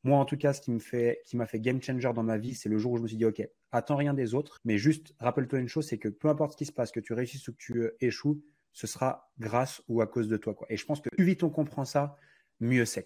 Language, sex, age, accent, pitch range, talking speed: French, male, 30-49, French, 110-135 Hz, 320 wpm